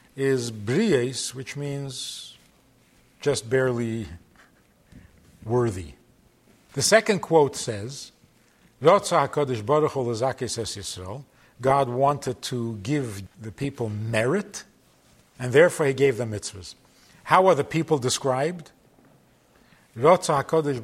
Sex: male